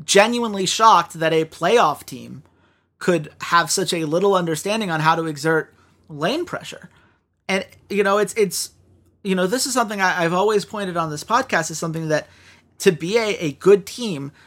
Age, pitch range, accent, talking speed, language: 30-49, 160-210 Hz, American, 180 wpm, English